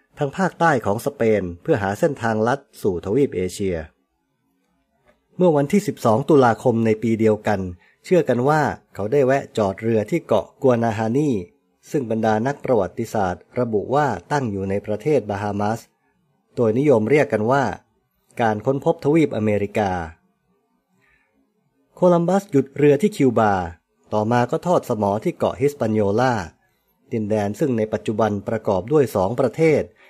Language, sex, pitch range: English, male, 105-140 Hz